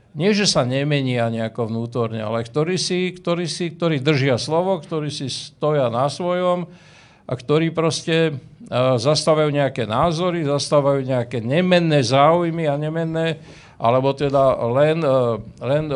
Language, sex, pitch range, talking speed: Slovak, male, 130-165 Hz, 125 wpm